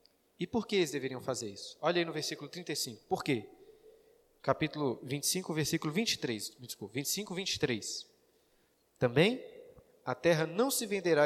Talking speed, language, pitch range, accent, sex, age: 145 wpm, Portuguese, 140-200 Hz, Brazilian, male, 20-39